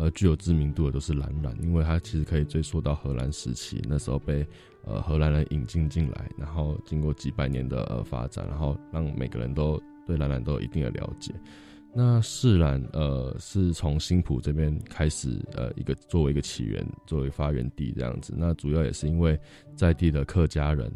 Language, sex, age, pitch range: Chinese, male, 20-39, 75-85 Hz